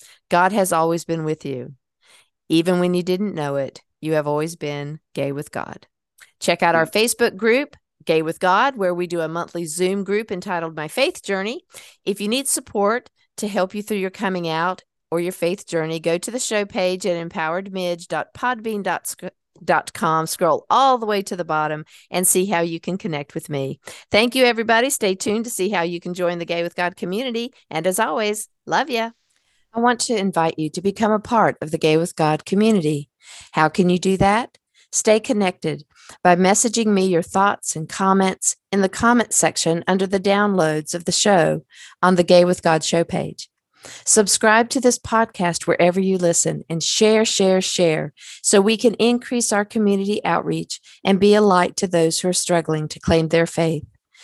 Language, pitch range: English, 165-215 Hz